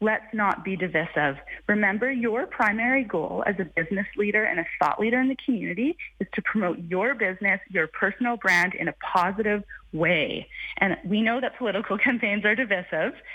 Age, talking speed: 30-49, 175 wpm